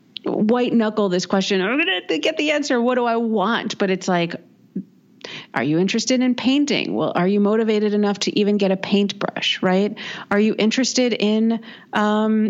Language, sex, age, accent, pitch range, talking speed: English, female, 40-59, American, 175-215 Hz, 185 wpm